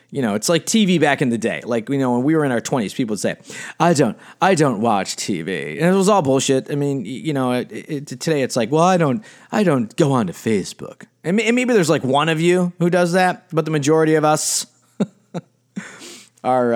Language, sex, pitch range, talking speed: English, male, 135-195 Hz, 240 wpm